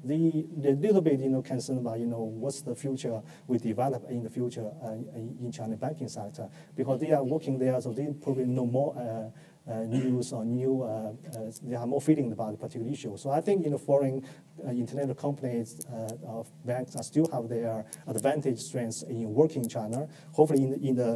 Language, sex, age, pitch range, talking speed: English, male, 40-59, 120-150 Hz, 215 wpm